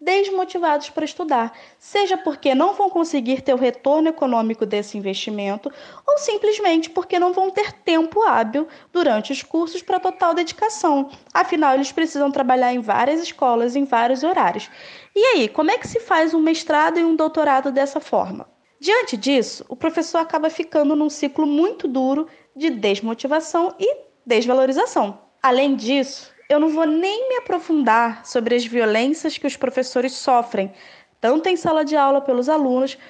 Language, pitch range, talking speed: Portuguese, 260-330 Hz, 160 wpm